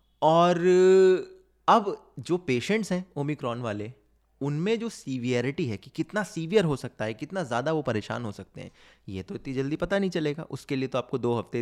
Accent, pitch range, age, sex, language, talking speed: native, 115-165 Hz, 20-39, male, Hindi, 190 wpm